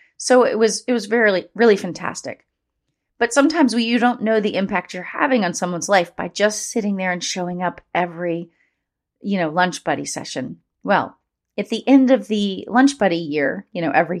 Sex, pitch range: female, 175-235 Hz